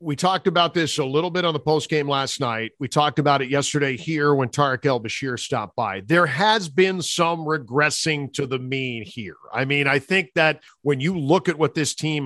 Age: 50-69